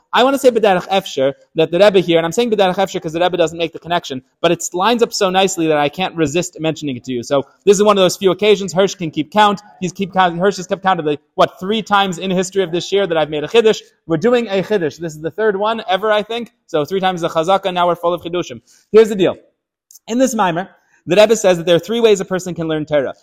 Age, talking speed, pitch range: 30-49, 285 wpm, 165-210 Hz